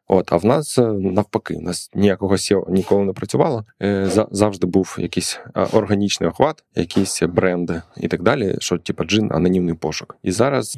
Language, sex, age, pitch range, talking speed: Ukrainian, male, 20-39, 90-105 Hz, 160 wpm